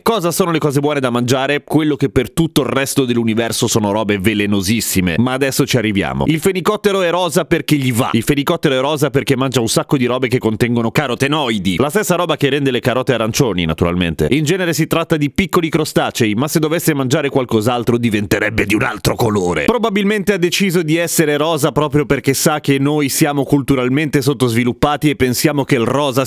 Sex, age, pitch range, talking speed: male, 30-49, 110-155 Hz, 195 wpm